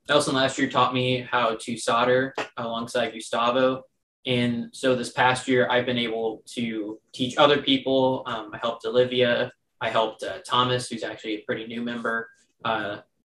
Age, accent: 20-39, American